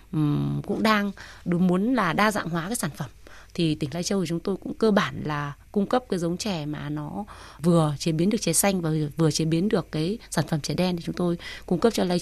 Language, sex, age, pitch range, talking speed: Vietnamese, female, 20-39, 160-205 Hz, 255 wpm